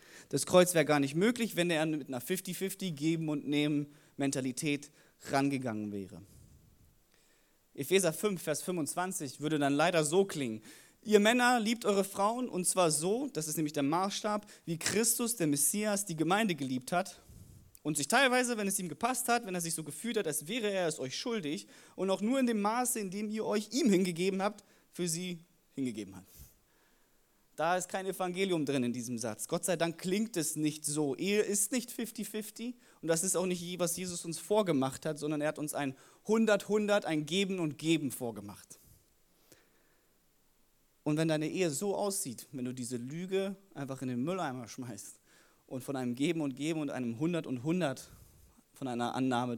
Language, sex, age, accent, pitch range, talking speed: German, male, 30-49, German, 140-195 Hz, 180 wpm